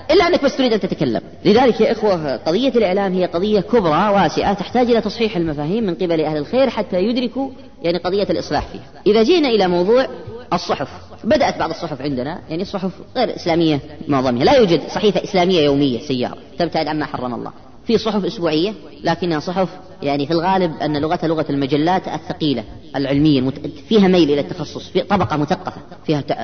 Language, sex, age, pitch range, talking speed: Arabic, female, 20-39, 140-195 Hz, 170 wpm